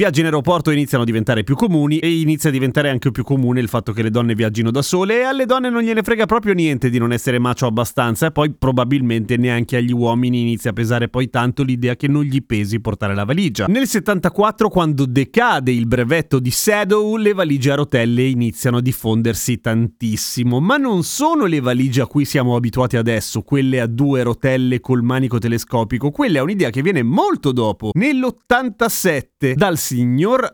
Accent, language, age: native, Italian, 30-49